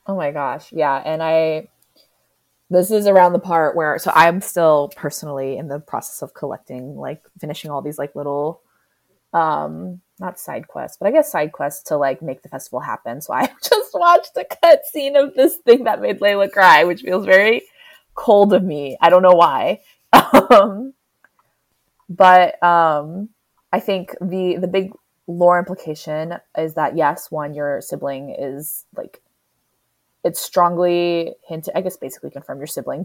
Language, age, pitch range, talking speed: English, 20-39, 150-195 Hz, 165 wpm